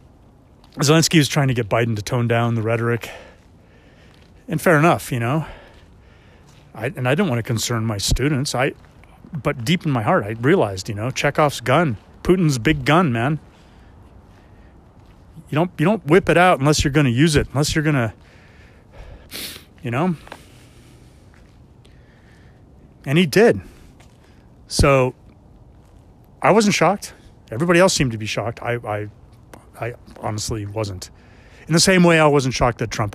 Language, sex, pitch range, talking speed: English, male, 105-145 Hz, 160 wpm